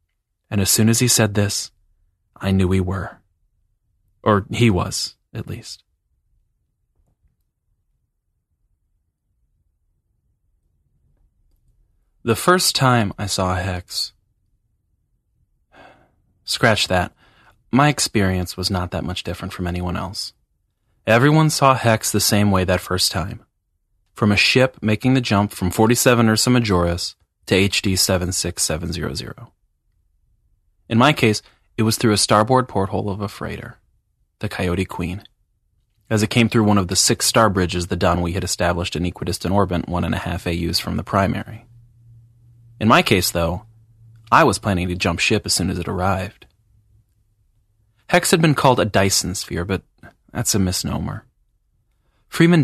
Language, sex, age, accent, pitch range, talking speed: English, male, 30-49, American, 90-110 Hz, 140 wpm